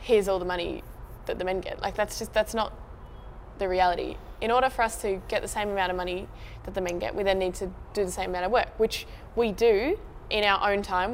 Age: 10-29